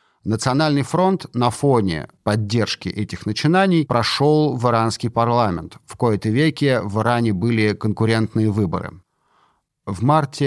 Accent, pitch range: native, 115-135 Hz